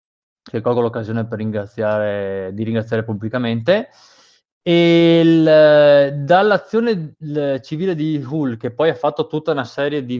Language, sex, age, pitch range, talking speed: Italian, male, 20-39, 115-165 Hz, 135 wpm